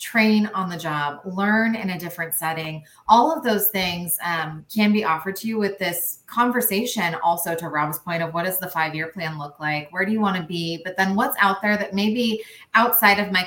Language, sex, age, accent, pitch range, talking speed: English, female, 20-39, American, 160-205 Hz, 225 wpm